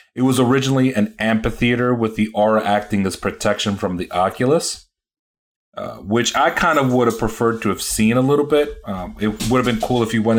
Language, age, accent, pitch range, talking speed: English, 30-49, American, 100-115 Hz, 215 wpm